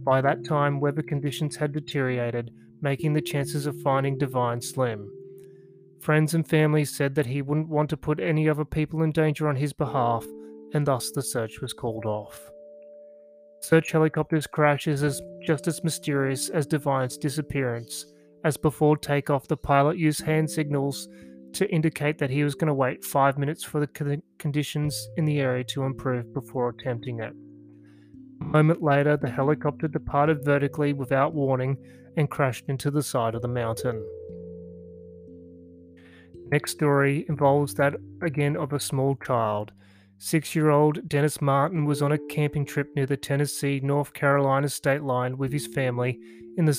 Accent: Australian